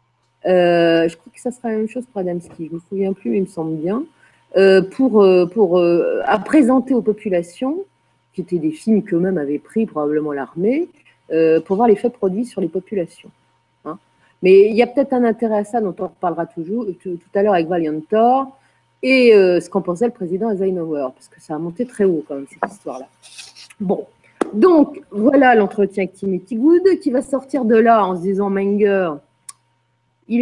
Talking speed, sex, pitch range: 205 wpm, female, 175-245 Hz